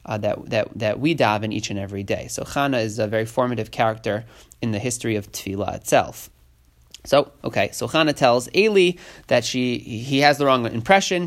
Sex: male